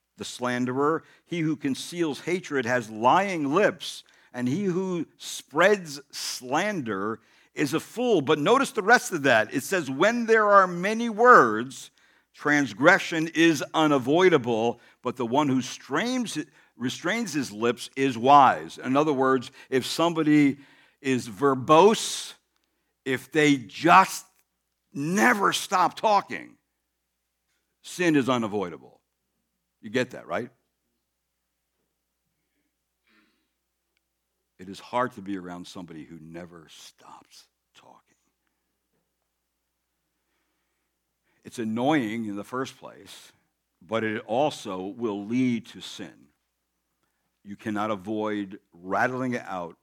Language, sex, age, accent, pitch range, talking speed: English, male, 60-79, American, 95-155 Hz, 110 wpm